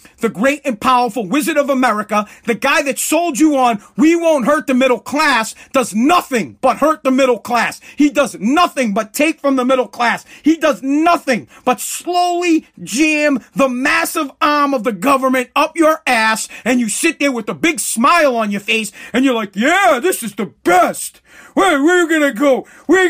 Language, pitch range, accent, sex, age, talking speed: English, 240-315 Hz, American, male, 40-59, 190 wpm